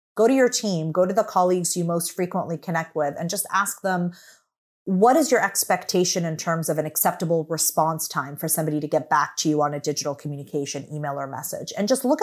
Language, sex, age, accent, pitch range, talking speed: English, female, 30-49, American, 160-200 Hz, 220 wpm